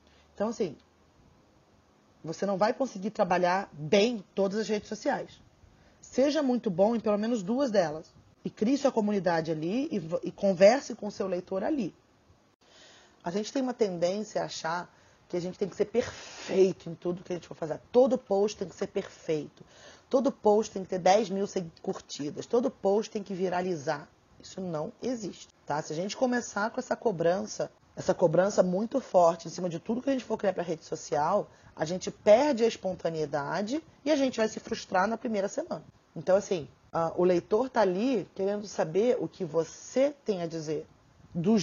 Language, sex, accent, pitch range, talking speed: Portuguese, female, Brazilian, 170-220 Hz, 185 wpm